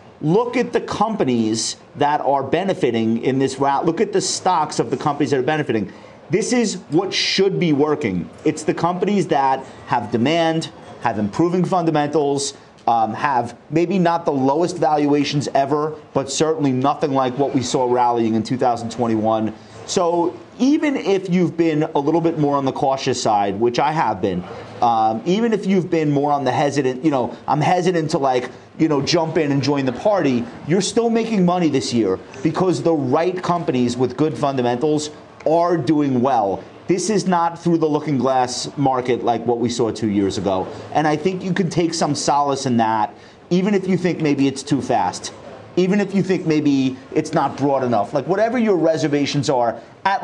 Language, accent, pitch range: English, American, 130-175 Hz